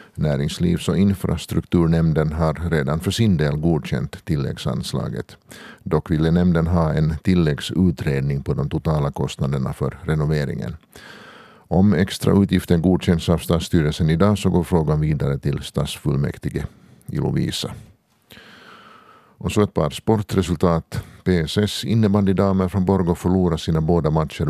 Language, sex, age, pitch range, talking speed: Swedish, male, 50-69, 75-95 Hz, 125 wpm